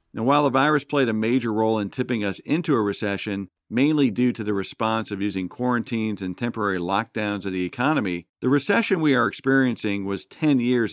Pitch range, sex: 105-130 Hz, male